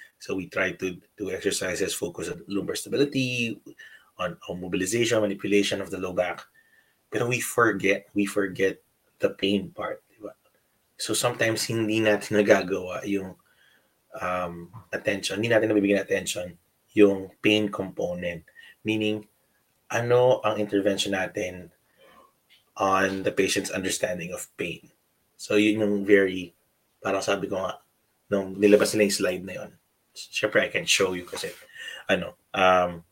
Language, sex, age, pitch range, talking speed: English, male, 20-39, 95-115 Hz, 130 wpm